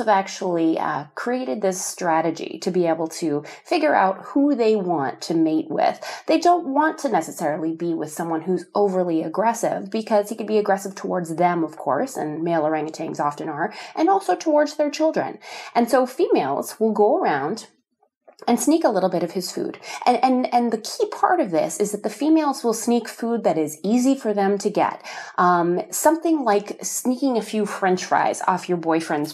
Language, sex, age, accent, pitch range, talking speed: English, female, 30-49, American, 175-260 Hz, 195 wpm